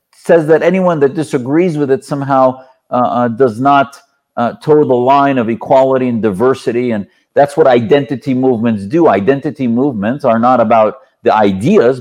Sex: male